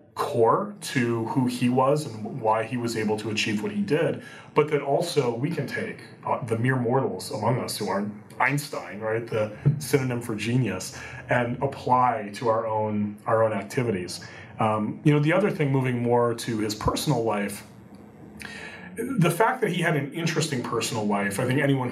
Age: 30-49